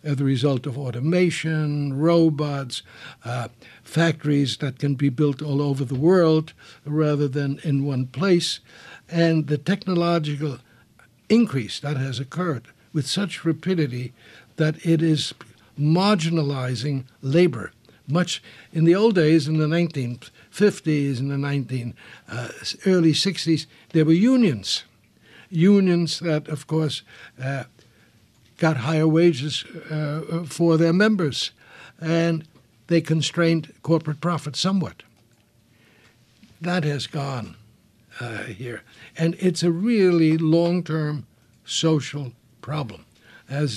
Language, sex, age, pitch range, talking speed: English, male, 60-79, 130-165 Hz, 115 wpm